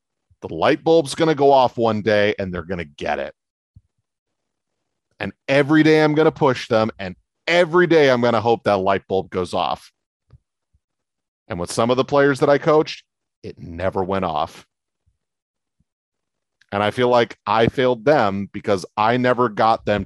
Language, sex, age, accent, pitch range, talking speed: English, male, 30-49, American, 105-145 Hz, 180 wpm